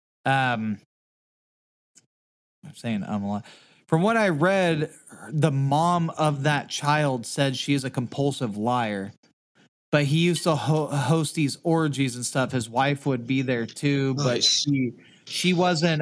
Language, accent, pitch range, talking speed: English, American, 125-155 Hz, 155 wpm